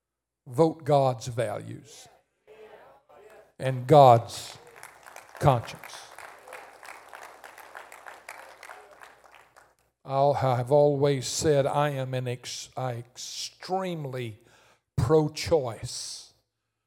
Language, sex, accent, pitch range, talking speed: English, male, American, 120-145 Hz, 55 wpm